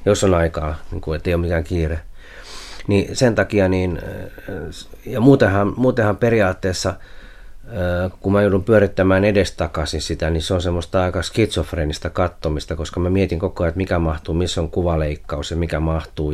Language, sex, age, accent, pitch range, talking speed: Finnish, male, 30-49, native, 80-95 Hz, 160 wpm